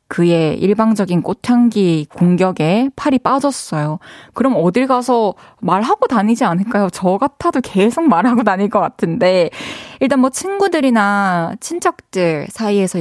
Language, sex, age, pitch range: Korean, female, 20-39, 180-270 Hz